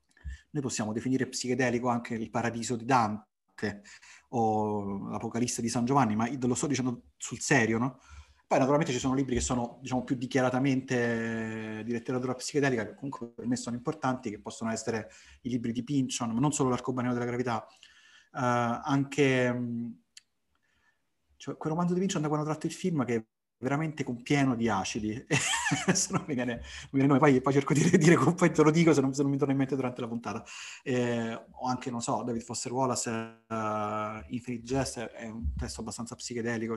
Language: Italian